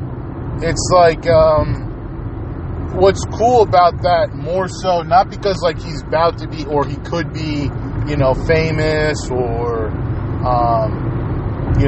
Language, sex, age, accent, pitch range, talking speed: English, male, 20-39, American, 120-155 Hz, 130 wpm